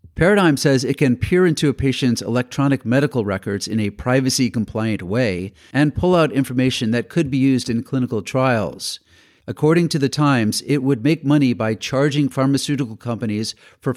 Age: 50-69